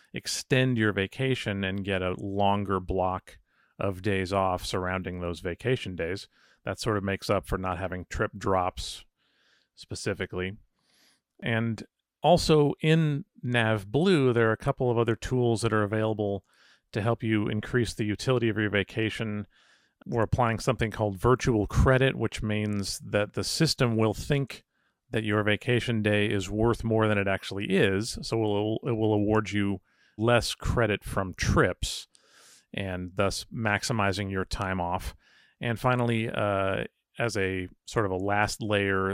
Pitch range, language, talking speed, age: 95-115 Hz, English, 155 wpm, 40-59